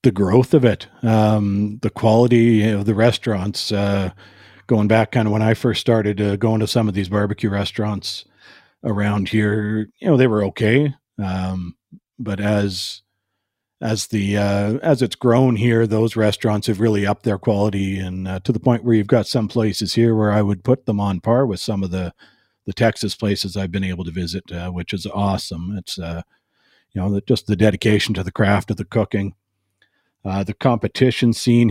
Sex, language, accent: male, English, American